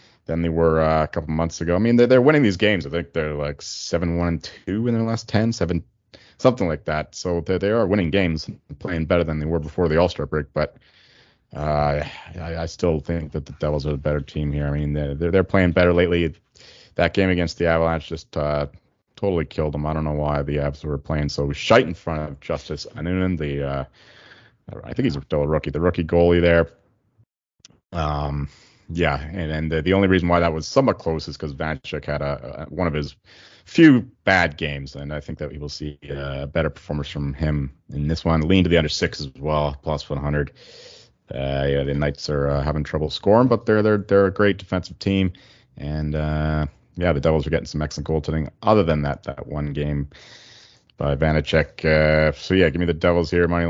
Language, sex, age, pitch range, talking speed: English, male, 30-49, 75-85 Hz, 215 wpm